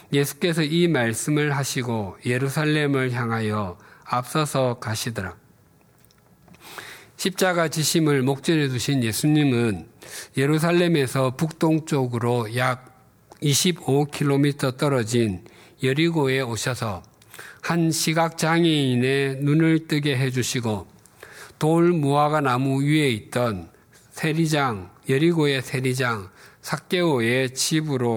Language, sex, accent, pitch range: Korean, male, native, 120-155 Hz